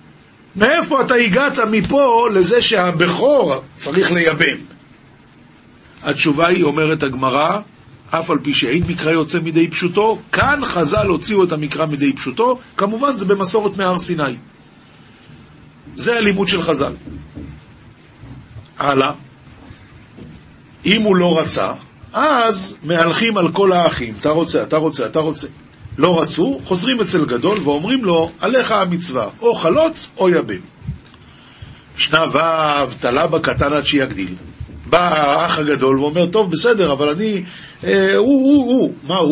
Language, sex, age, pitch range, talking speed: Hebrew, male, 50-69, 155-215 Hz, 130 wpm